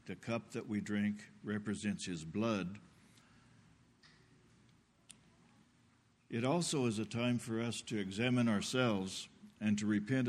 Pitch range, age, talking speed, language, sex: 105-130 Hz, 60-79, 120 wpm, English, male